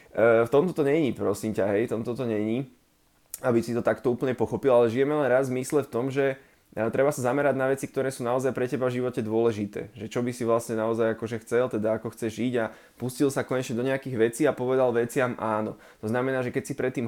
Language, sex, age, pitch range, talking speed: Slovak, male, 20-39, 110-130 Hz, 240 wpm